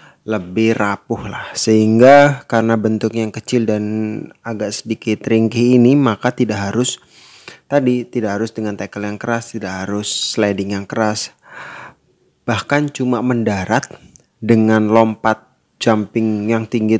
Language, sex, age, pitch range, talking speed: Indonesian, male, 20-39, 105-120 Hz, 125 wpm